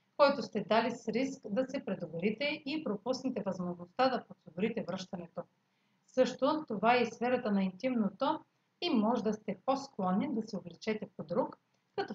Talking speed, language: 160 wpm, Bulgarian